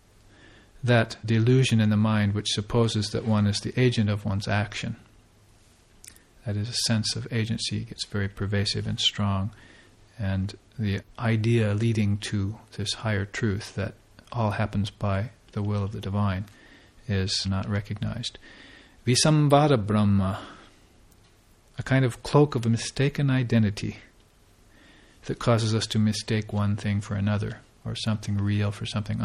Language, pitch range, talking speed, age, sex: English, 100-115 Hz, 145 wpm, 50-69, male